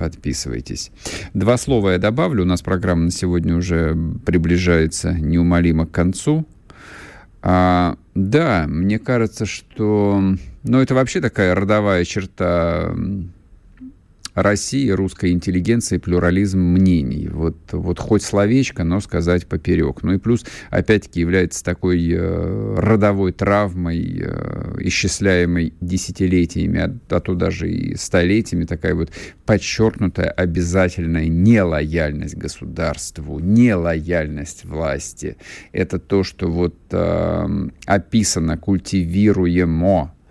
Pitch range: 85-100 Hz